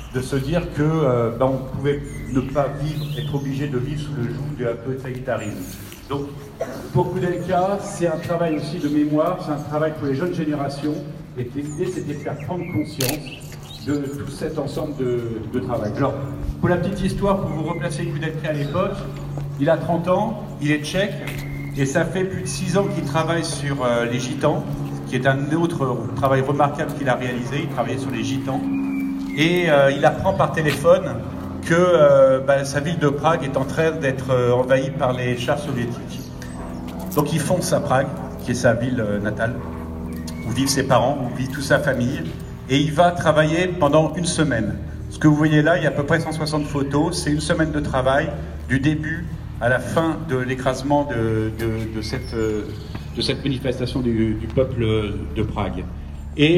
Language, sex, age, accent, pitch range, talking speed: French, male, 50-69, French, 125-155 Hz, 195 wpm